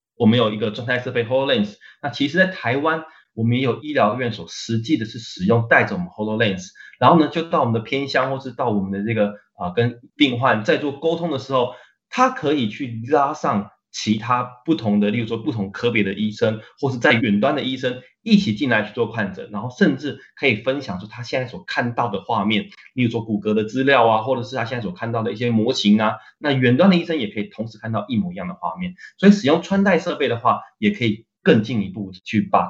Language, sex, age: Chinese, male, 20-39